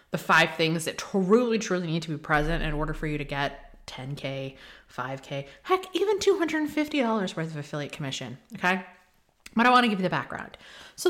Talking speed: 190 wpm